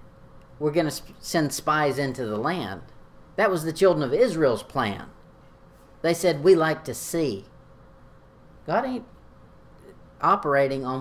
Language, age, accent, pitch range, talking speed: English, 50-69, American, 125-160 Hz, 135 wpm